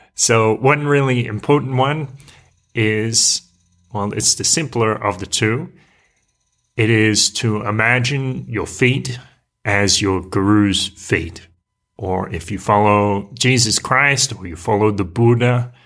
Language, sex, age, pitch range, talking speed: English, male, 30-49, 100-125 Hz, 130 wpm